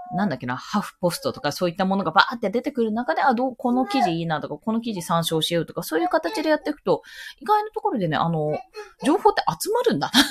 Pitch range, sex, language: 160-260 Hz, female, Japanese